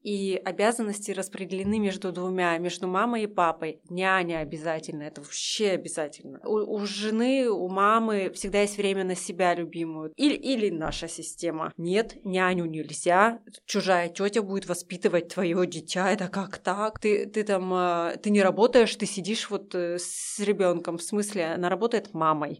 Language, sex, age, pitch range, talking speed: Russian, female, 20-39, 180-215 Hz, 150 wpm